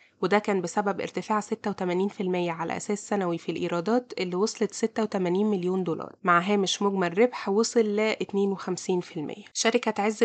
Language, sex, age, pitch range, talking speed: Arabic, female, 20-39, 185-215 Hz, 140 wpm